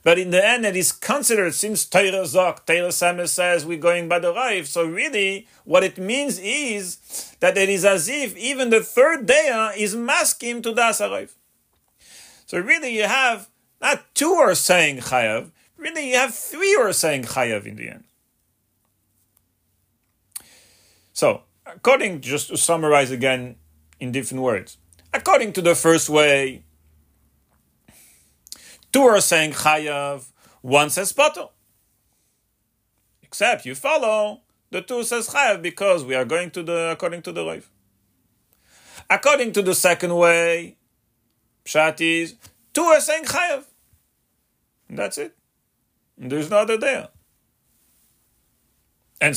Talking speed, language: 140 wpm, English